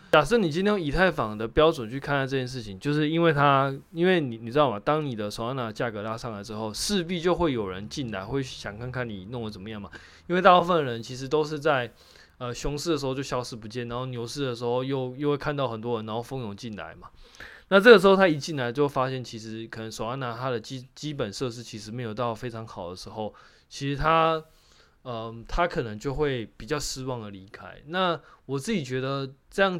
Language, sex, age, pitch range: Chinese, male, 20-39, 115-150 Hz